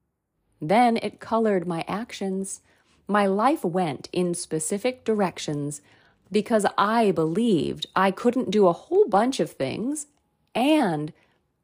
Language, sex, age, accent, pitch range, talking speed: English, female, 40-59, American, 165-225 Hz, 120 wpm